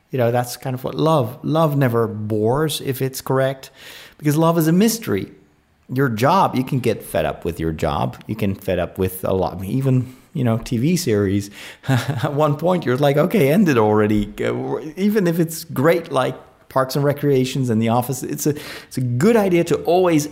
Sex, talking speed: male, 200 wpm